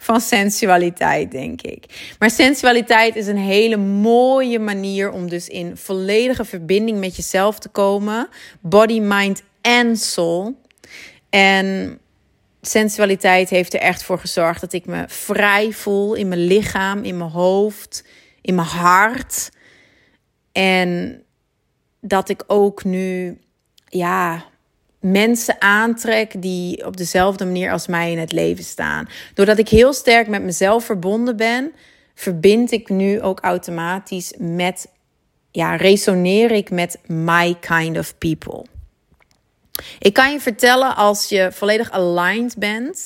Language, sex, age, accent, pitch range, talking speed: Dutch, female, 30-49, Dutch, 180-215 Hz, 130 wpm